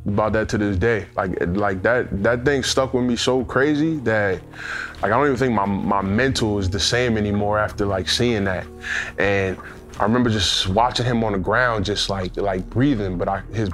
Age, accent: 20-39, American